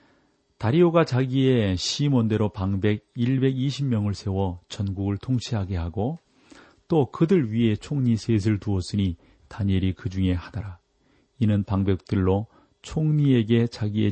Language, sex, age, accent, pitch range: Korean, male, 40-59, native, 95-125 Hz